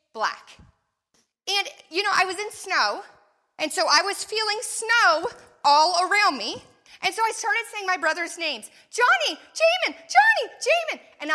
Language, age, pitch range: English, 40-59, 220-340 Hz